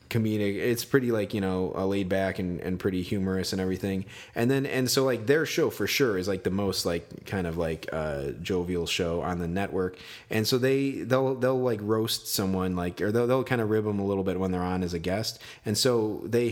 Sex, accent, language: male, American, English